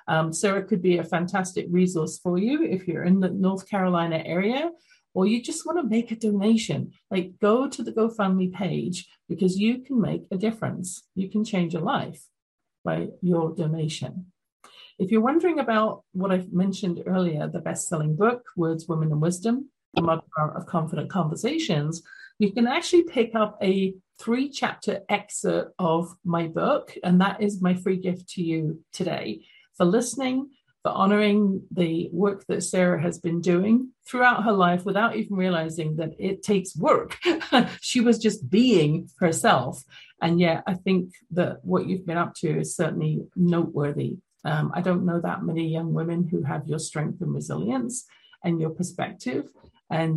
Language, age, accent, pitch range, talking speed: English, 50-69, British, 165-210 Hz, 170 wpm